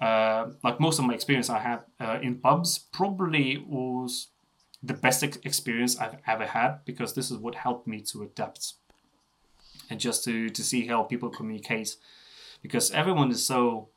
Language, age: Russian, 20-39